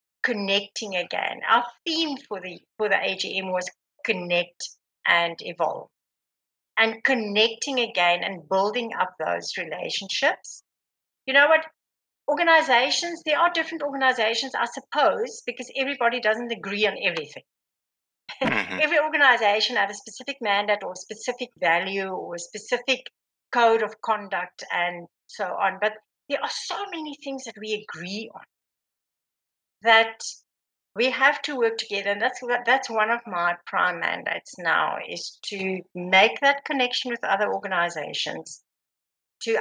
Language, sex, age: English, female, 60-79